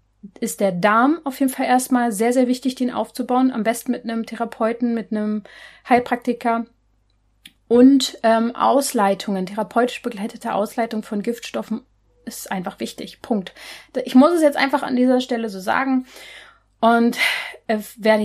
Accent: German